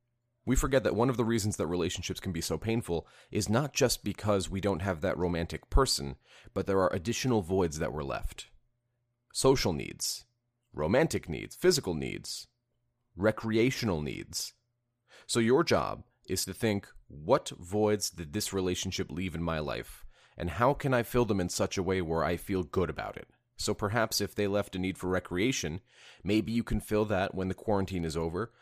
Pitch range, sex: 85-115 Hz, male